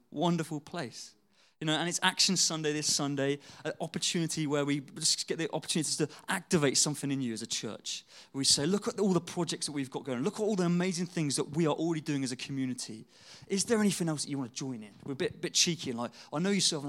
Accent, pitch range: British, 135-170 Hz